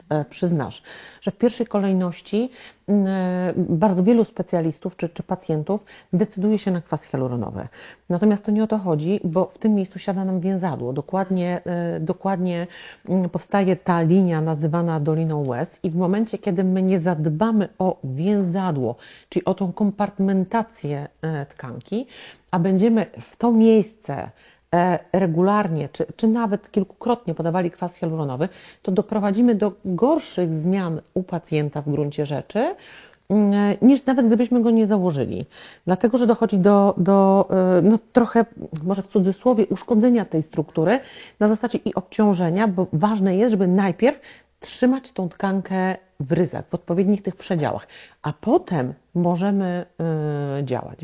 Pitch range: 170-210 Hz